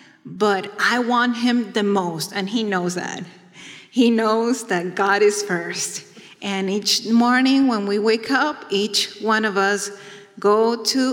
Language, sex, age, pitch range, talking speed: English, female, 30-49, 190-240 Hz, 155 wpm